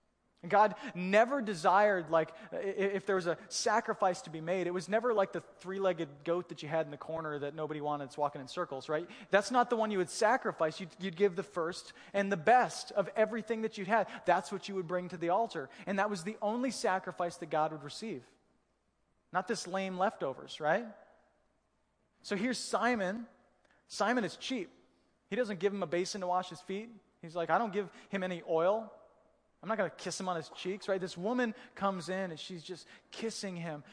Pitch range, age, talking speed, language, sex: 170-210 Hz, 20-39, 210 wpm, English, male